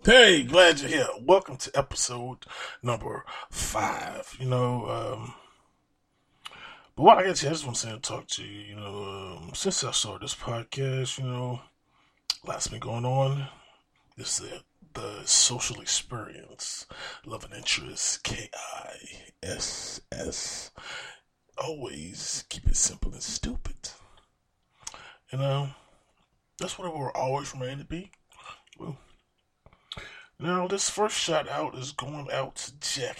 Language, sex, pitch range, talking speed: English, male, 115-140 Hz, 135 wpm